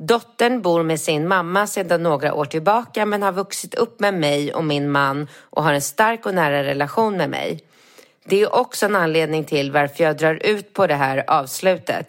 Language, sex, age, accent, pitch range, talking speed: Swedish, female, 30-49, native, 150-195 Hz, 205 wpm